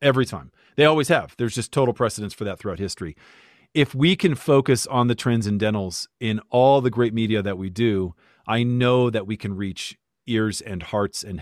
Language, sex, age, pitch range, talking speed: English, male, 40-59, 105-125 Hz, 200 wpm